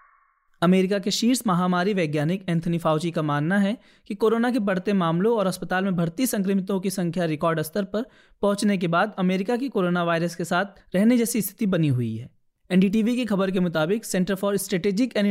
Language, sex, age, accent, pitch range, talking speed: Hindi, male, 20-39, native, 175-215 Hz, 190 wpm